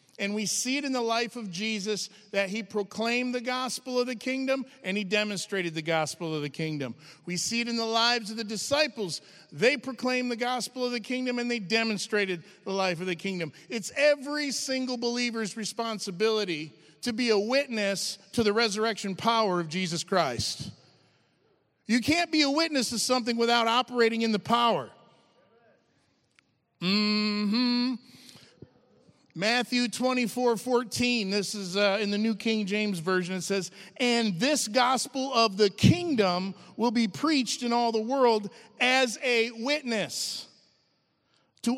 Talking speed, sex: 160 wpm, male